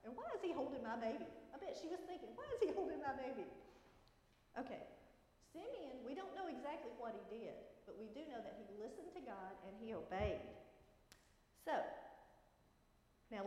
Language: English